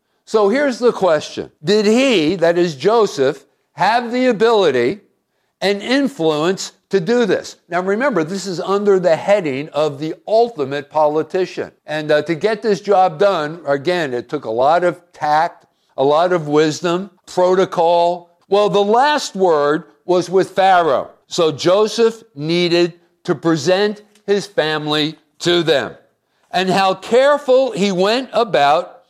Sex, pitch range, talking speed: male, 160-205 Hz, 140 wpm